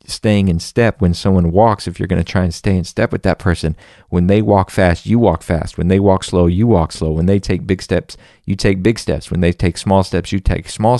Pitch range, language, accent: 85-105 Hz, English, American